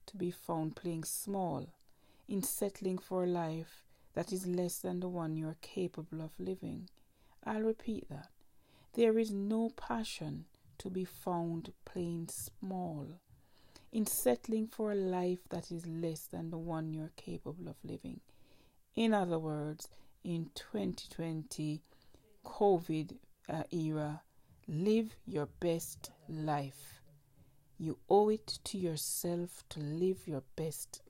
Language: English